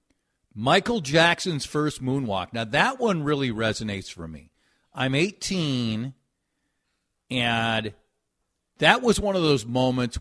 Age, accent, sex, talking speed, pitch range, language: 50-69, American, male, 120 wpm, 110-165 Hz, English